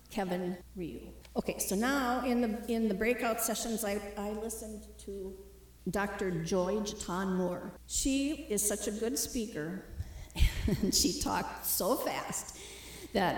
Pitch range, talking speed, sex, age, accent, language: 185-235 Hz, 135 wpm, female, 50-69, American, English